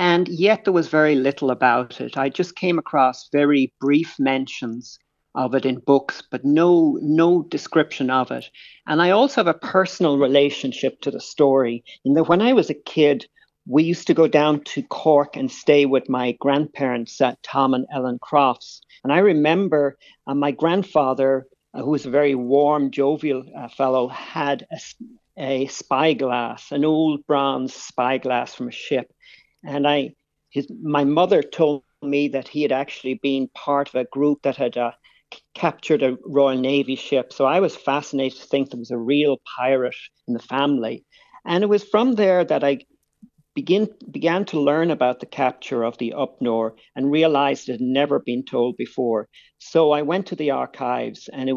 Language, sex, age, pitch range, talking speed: English, male, 50-69, 130-160 Hz, 180 wpm